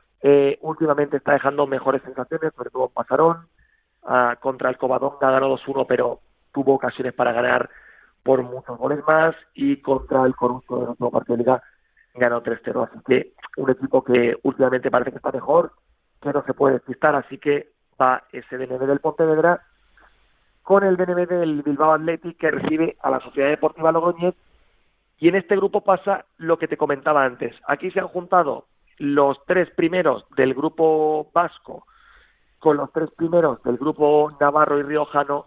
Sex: male